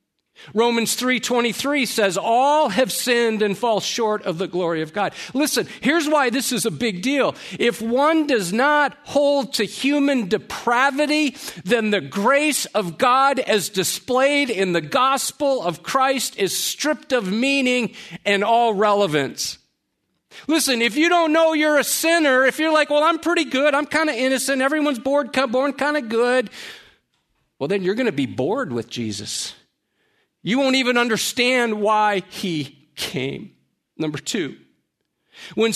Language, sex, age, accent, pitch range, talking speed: English, male, 50-69, American, 175-270 Hz, 160 wpm